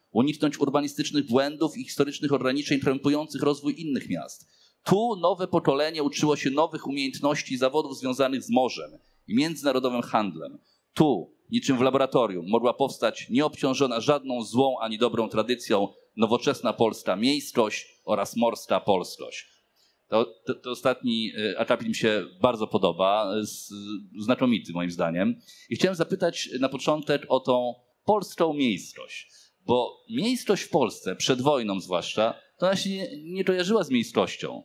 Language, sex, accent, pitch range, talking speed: English, male, Polish, 125-185 Hz, 135 wpm